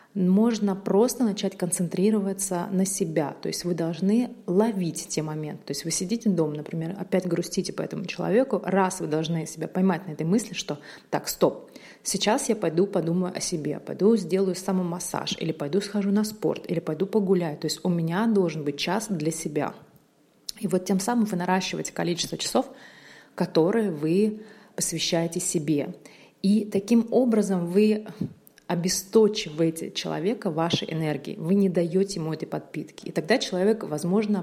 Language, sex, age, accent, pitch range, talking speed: Russian, female, 30-49, native, 165-200 Hz, 160 wpm